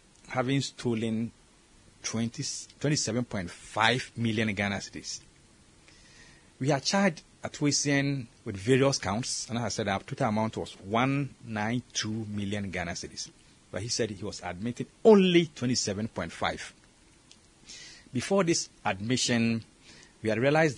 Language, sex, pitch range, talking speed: English, male, 100-130 Hz, 110 wpm